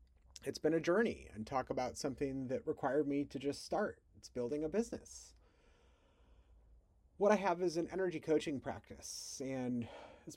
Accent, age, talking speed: American, 30-49, 160 wpm